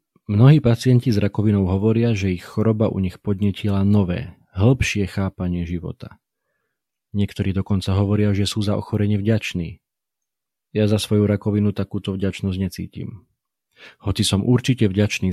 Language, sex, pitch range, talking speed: Slovak, male, 90-110 Hz, 135 wpm